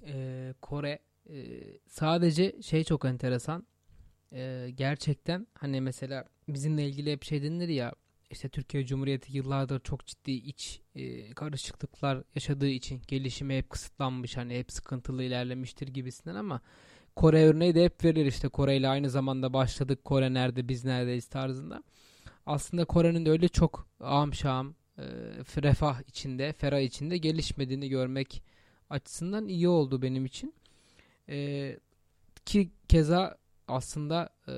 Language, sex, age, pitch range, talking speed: Turkish, male, 20-39, 130-155 Hz, 120 wpm